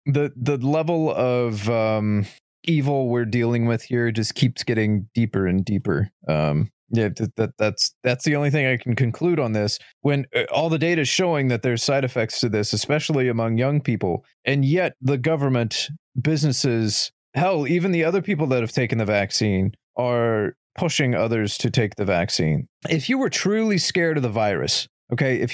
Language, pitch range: English, 110-150 Hz